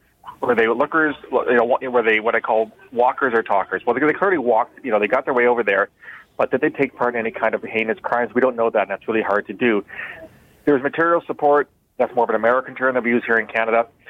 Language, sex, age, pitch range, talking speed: English, male, 30-49, 110-140 Hz, 255 wpm